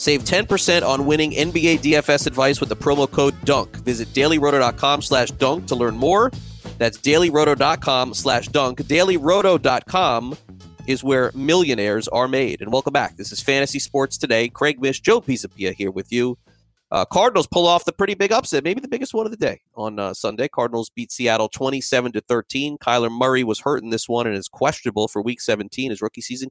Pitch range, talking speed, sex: 110-145 Hz, 185 wpm, male